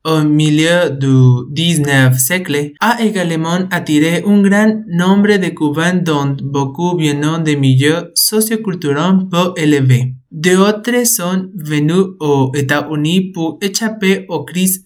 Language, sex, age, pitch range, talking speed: French, male, 20-39, 140-180 Hz, 120 wpm